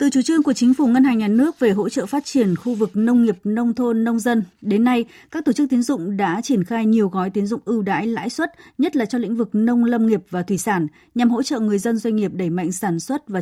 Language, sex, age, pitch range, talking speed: Vietnamese, female, 20-39, 195-245 Hz, 285 wpm